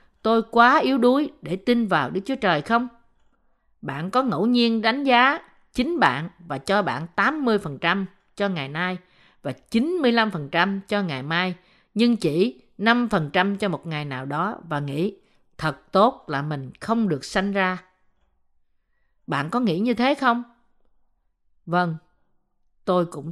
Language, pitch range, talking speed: Vietnamese, 175-240 Hz, 150 wpm